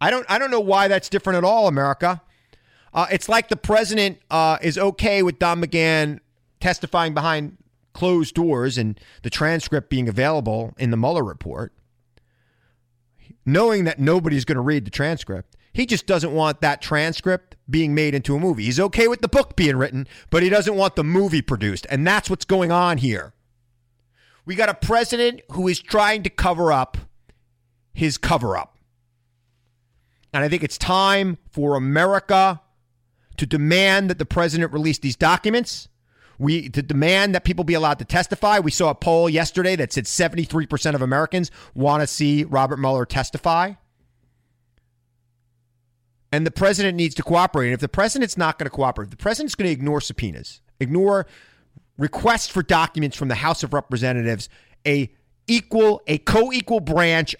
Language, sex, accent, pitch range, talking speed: English, male, American, 125-180 Hz, 170 wpm